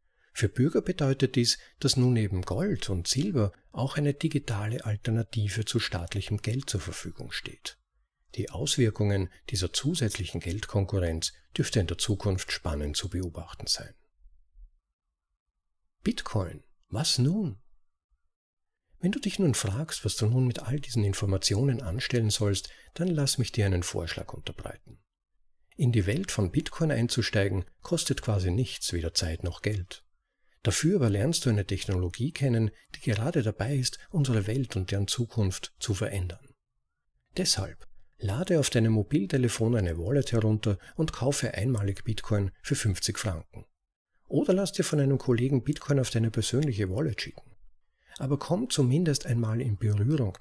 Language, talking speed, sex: German, 145 wpm, male